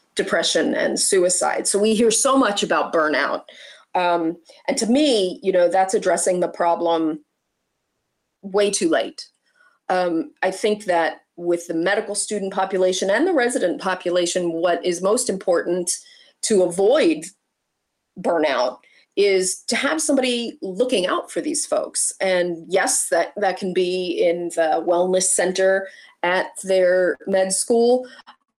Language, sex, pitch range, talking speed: English, female, 175-225 Hz, 140 wpm